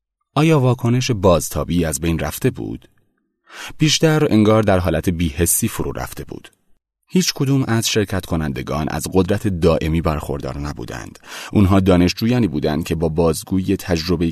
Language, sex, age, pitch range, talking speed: Persian, male, 30-49, 80-110 Hz, 135 wpm